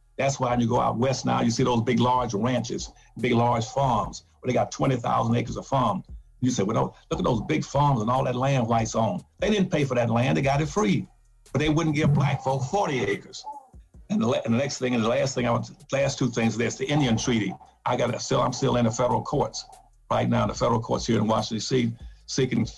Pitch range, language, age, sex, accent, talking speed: 120-135 Hz, English, 50-69, male, American, 255 wpm